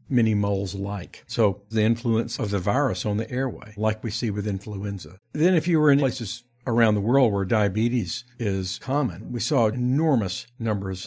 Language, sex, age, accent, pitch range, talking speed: English, male, 60-79, American, 105-125 Hz, 185 wpm